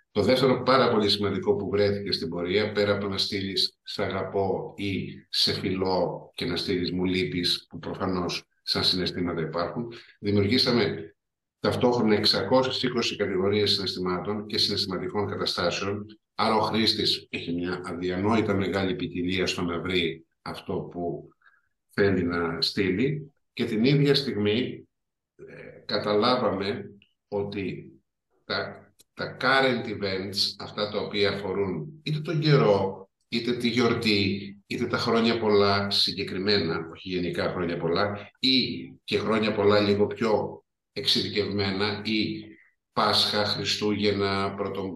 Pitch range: 95-110 Hz